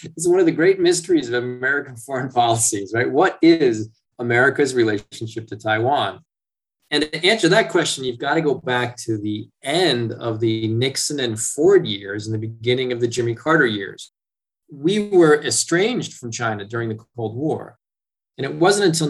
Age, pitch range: 20-39, 110-145 Hz